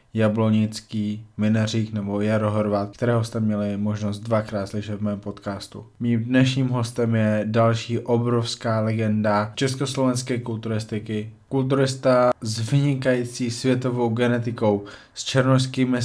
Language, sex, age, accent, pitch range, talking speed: Czech, male, 20-39, native, 110-125 Hz, 110 wpm